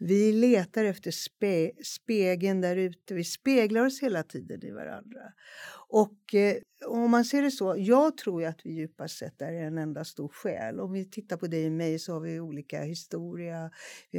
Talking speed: 190 wpm